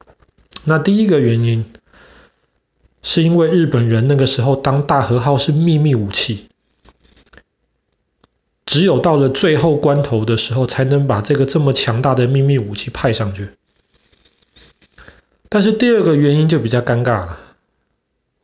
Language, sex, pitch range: Chinese, male, 115-155 Hz